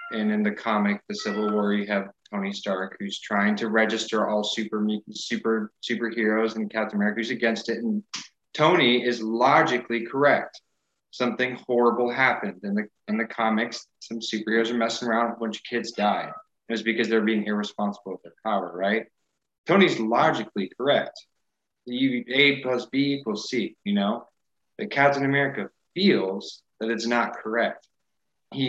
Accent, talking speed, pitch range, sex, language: American, 160 wpm, 105-135 Hz, male, English